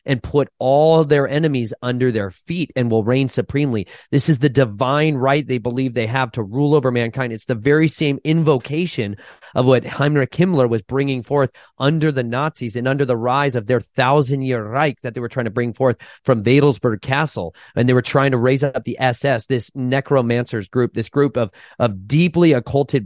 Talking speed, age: 200 wpm, 30-49